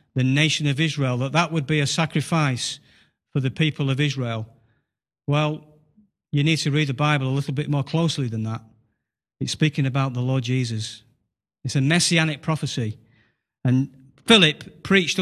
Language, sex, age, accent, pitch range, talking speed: English, male, 40-59, British, 130-175 Hz, 165 wpm